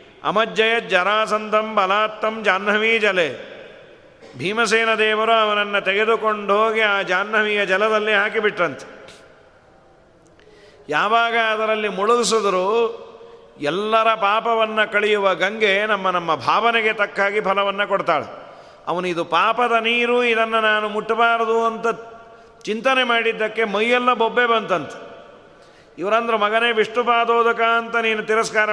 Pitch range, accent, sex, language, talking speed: 190-225 Hz, native, male, Kannada, 95 wpm